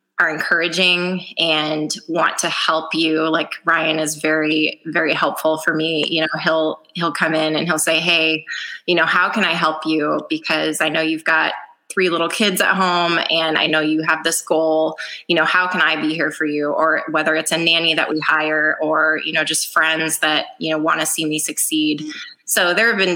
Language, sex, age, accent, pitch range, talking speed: English, female, 20-39, American, 155-170 Hz, 215 wpm